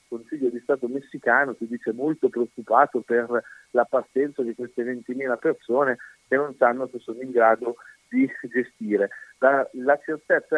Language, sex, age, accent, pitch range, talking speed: Italian, male, 40-59, native, 115-140 Hz, 155 wpm